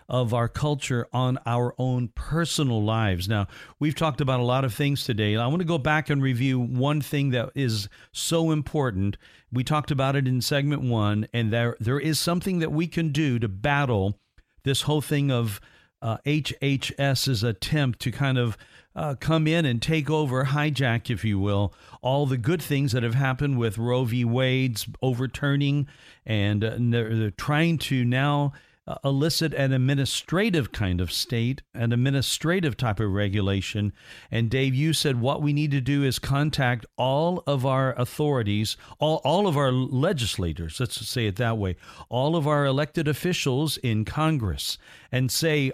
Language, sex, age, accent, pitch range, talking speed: English, male, 50-69, American, 115-145 Hz, 175 wpm